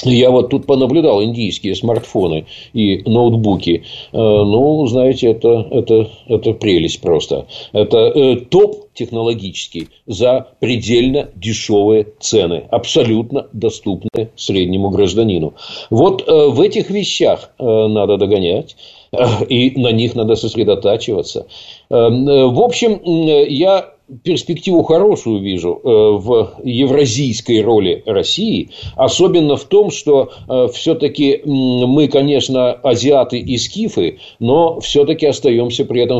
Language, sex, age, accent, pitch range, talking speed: Russian, male, 50-69, native, 110-150 Hz, 100 wpm